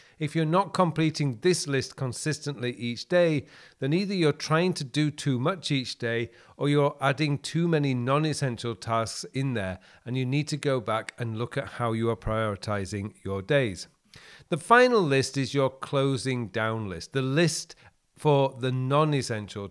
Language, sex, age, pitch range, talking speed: English, male, 40-59, 115-155 Hz, 170 wpm